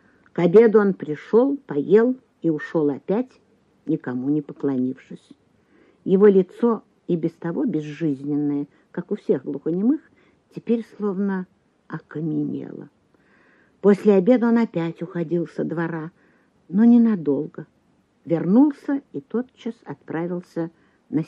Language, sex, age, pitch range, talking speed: Russian, female, 50-69, 170-240 Hz, 105 wpm